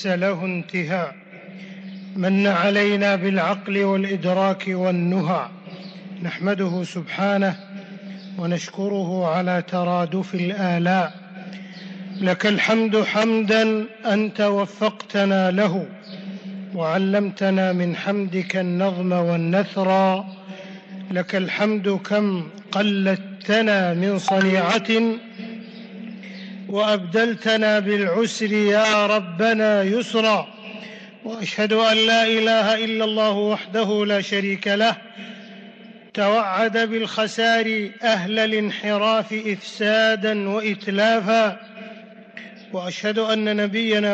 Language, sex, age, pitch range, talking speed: English, male, 50-69, 190-220 Hz, 75 wpm